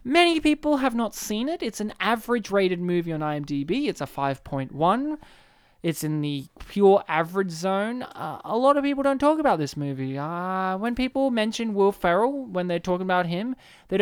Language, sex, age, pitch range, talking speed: English, male, 20-39, 155-220 Hz, 185 wpm